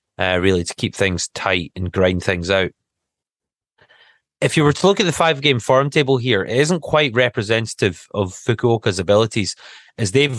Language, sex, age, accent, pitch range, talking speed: English, male, 30-49, British, 100-125 Hz, 175 wpm